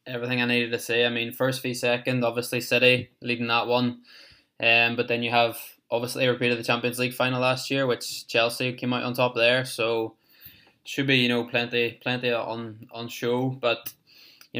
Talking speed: 195 wpm